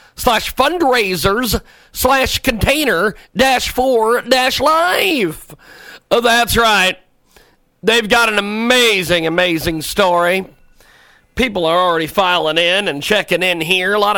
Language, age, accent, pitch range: English, 40-59, American, 165-205 Hz